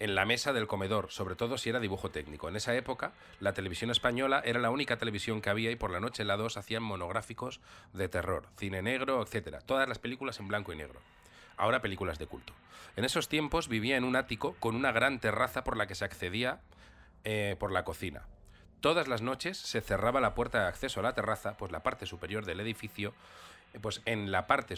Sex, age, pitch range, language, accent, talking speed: male, 30-49, 95-120 Hz, Spanish, Spanish, 220 wpm